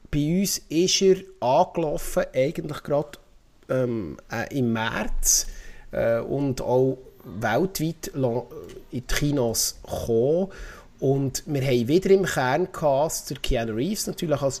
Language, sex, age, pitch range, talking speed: German, male, 30-49, 120-155 Hz, 125 wpm